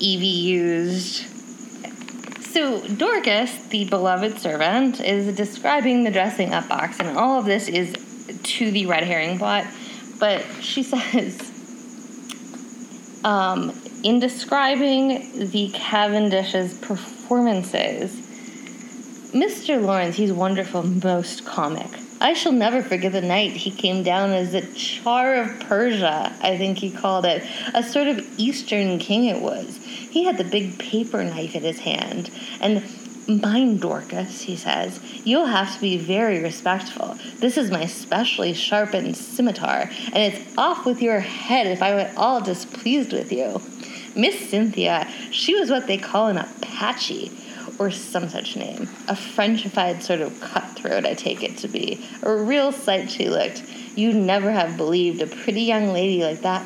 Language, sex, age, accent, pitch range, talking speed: English, female, 20-39, American, 190-250 Hz, 150 wpm